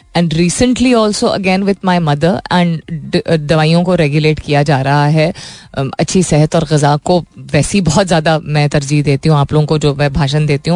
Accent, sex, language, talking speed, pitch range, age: native, female, Hindi, 190 wpm, 155-205 Hz, 20-39